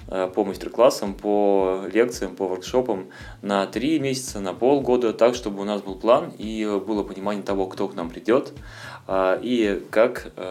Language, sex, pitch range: Russian, male, 95-110 Hz